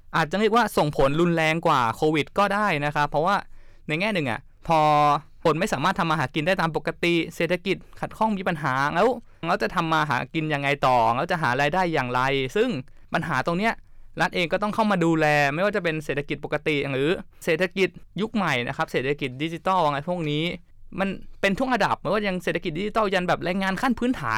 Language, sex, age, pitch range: Thai, male, 20-39, 140-185 Hz